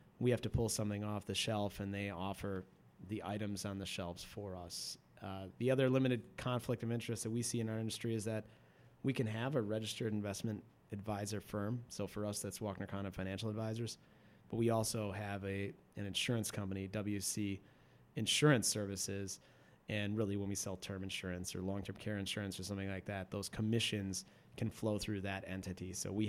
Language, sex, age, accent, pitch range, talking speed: English, male, 30-49, American, 95-110 Hz, 190 wpm